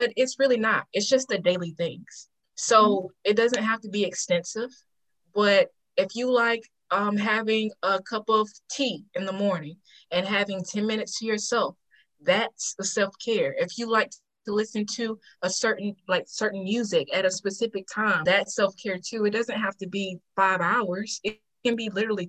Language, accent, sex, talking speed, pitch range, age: English, American, female, 180 wpm, 180-220 Hz, 20-39